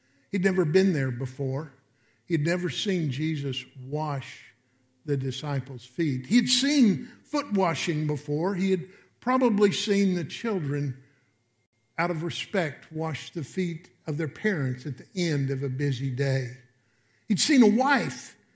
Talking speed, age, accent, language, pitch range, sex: 140 wpm, 50-69, American, English, 140-210 Hz, male